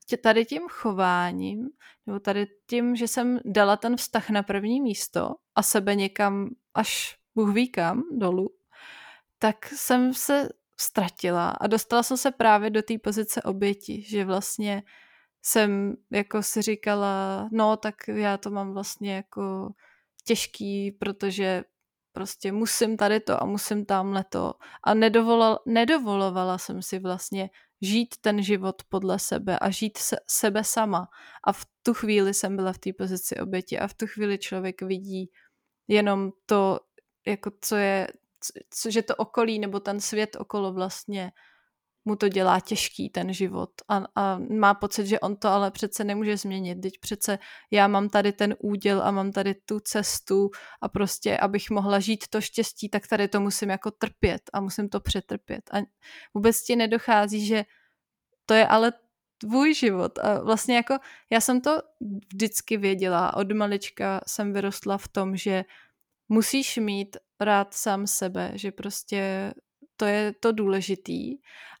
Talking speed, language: 155 wpm, Czech